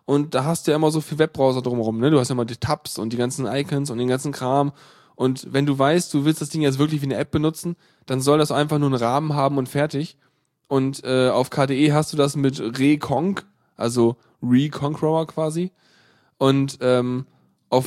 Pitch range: 120-150 Hz